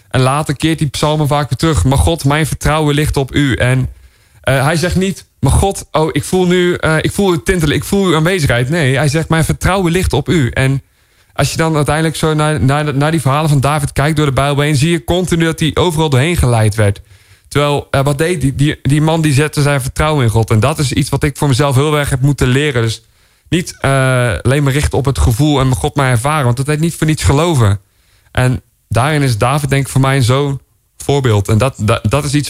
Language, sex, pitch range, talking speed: Dutch, male, 125-150 Hz, 245 wpm